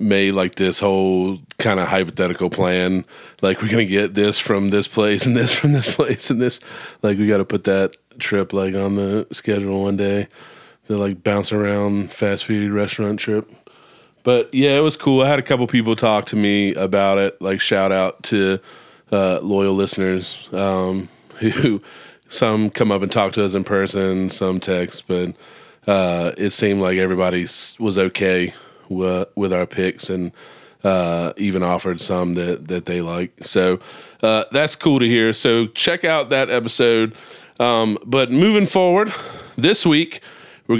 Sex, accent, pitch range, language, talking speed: male, American, 95-115 Hz, English, 175 wpm